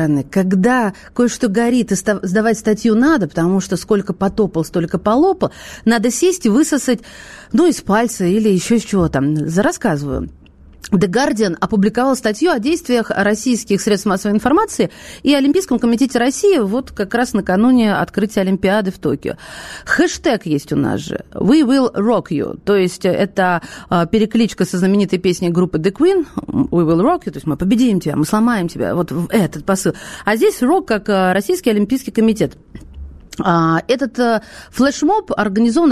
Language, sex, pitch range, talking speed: Russian, female, 180-245 Hz, 155 wpm